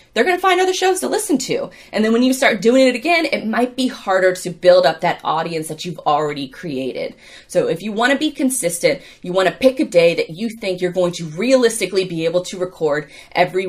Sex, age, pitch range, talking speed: female, 20-39, 180-260 Hz, 240 wpm